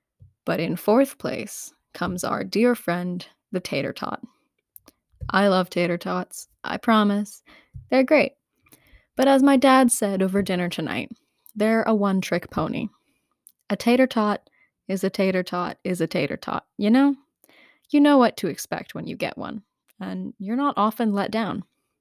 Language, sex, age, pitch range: English, female, 20-39, 185-250 Hz